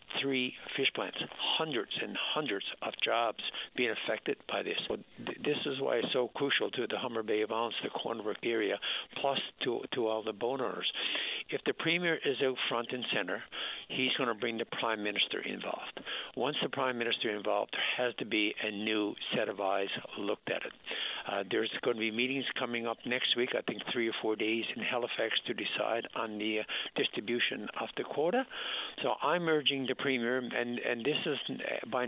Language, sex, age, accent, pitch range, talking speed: English, male, 60-79, American, 110-130 Hz, 195 wpm